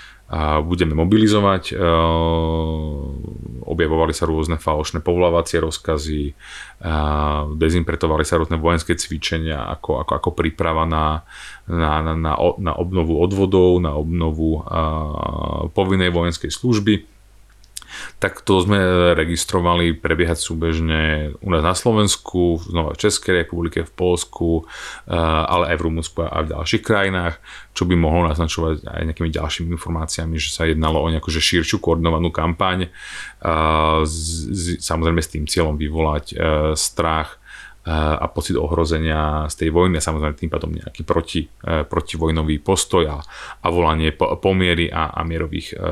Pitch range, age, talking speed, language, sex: 80-90 Hz, 30-49, 125 wpm, Slovak, male